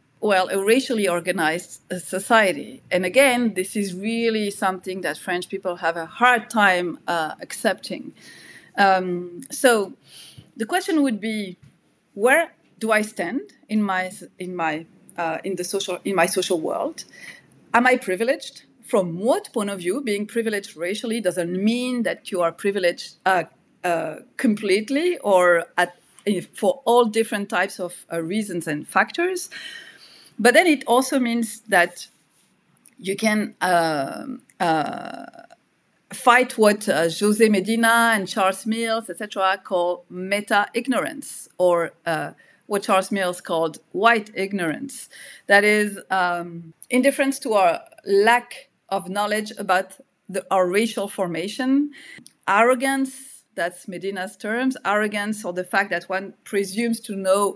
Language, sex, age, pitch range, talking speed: English, female, 40-59, 185-230 Hz, 135 wpm